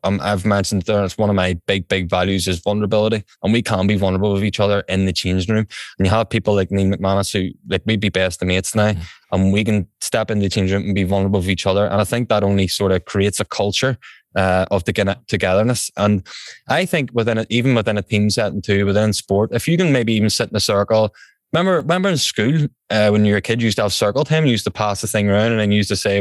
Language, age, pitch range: English, 10-29, 100-115 Hz